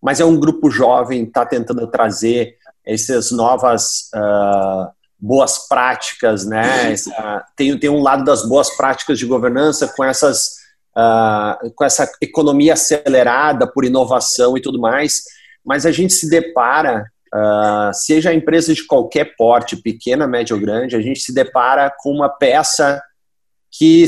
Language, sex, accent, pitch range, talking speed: Portuguese, male, Brazilian, 120-155 Hz, 150 wpm